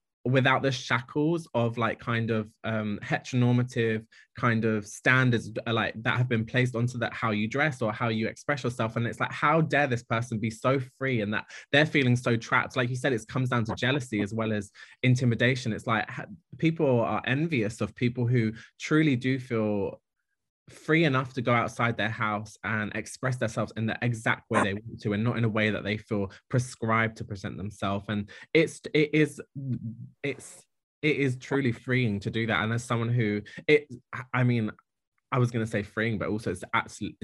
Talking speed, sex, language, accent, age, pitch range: 200 wpm, male, English, British, 20-39, 105-125 Hz